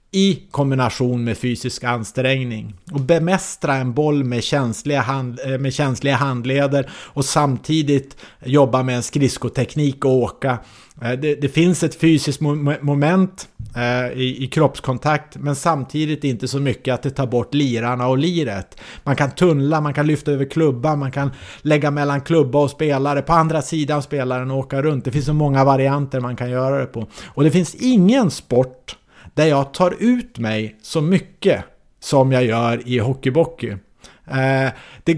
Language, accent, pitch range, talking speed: English, Norwegian, 130-155 Hz, 155 wpm